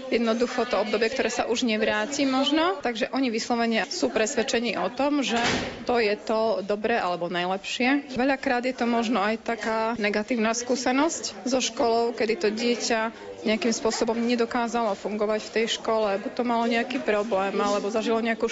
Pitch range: 210-240 Hz